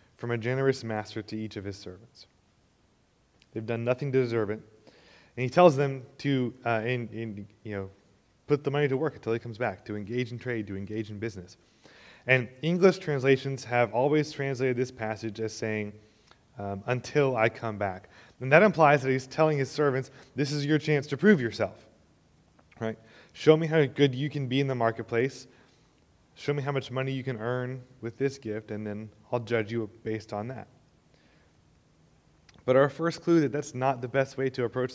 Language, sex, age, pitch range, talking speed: English, male, 20-39, 110-135 Hz, 195 wpm